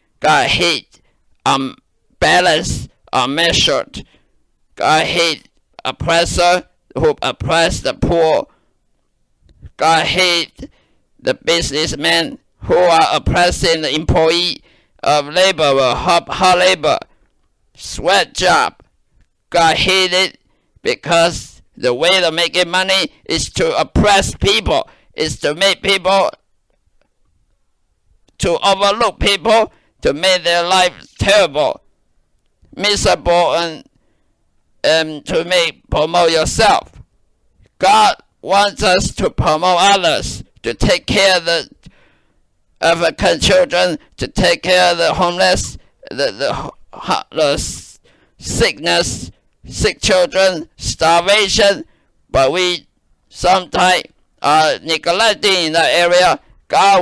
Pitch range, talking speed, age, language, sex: 160-190 Hz, 100 wpm, 50-69, English, male